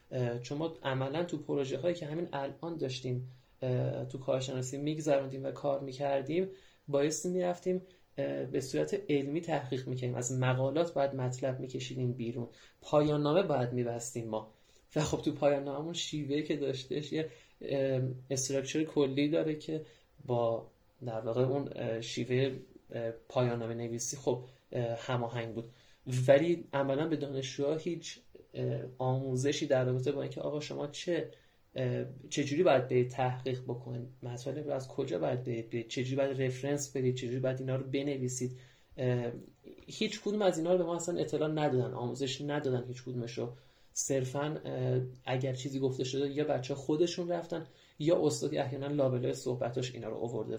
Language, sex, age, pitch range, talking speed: Persian, male, 30-49, 125-150 Hz, 145 wpm